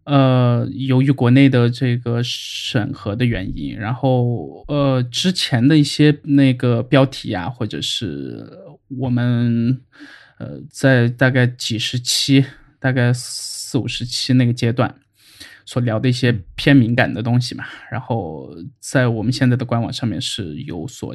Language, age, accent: Chinese, 20-39, native